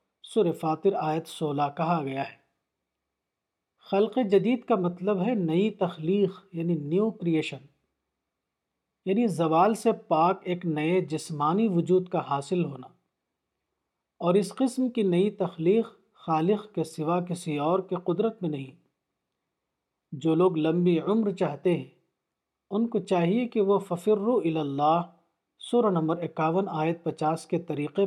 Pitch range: 160-195 Hz